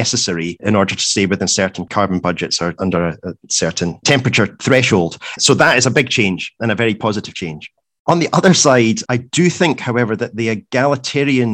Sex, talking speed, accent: male, 195 wpm, British